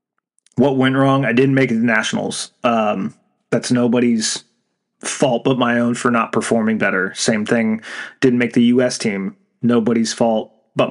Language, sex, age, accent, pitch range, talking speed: English, male, 30-49, American, 115-135 Hz, 170 wpm